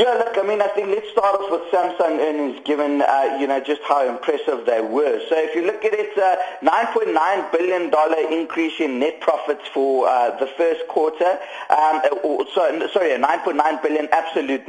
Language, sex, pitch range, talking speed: English, male, 145-185 Hz, 185 wpm